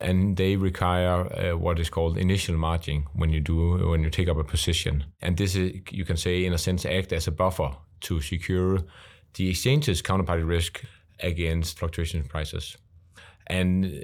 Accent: Danish